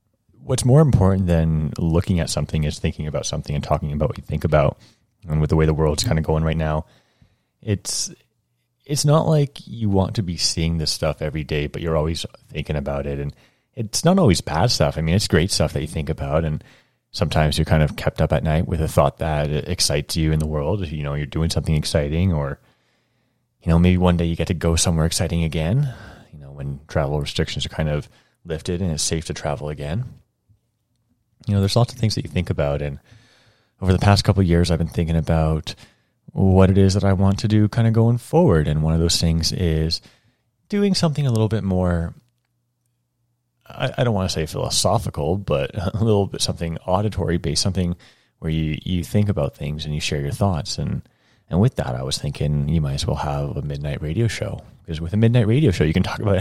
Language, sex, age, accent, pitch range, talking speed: English, male, 30-49, American, 75-105 Hz, 225 wpm